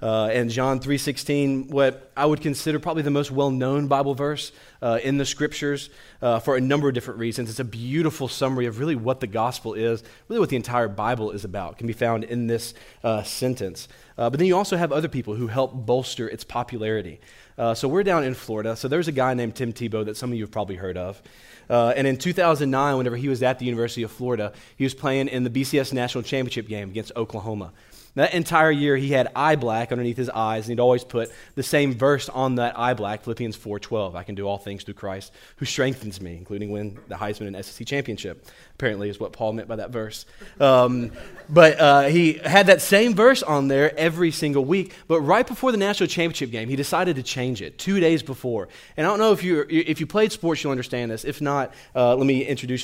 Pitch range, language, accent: 115-145 Hz, English, American